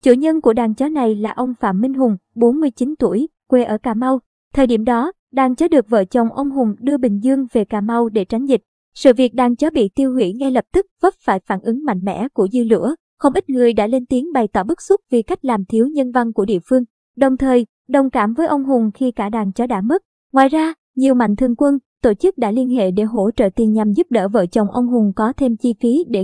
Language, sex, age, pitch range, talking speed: Vietnamese, male, 20-39, 215-265 Hz, 260 wpm